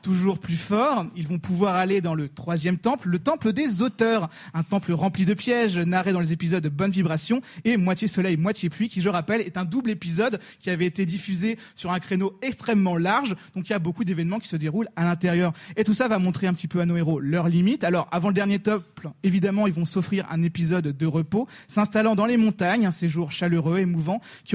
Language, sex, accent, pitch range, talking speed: French, male, French, 175-220 Hz, 230 wpm